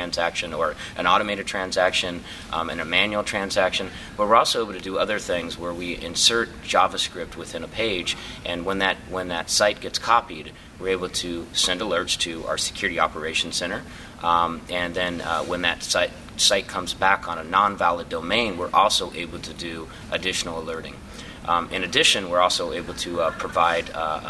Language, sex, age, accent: English, male, 30-49, American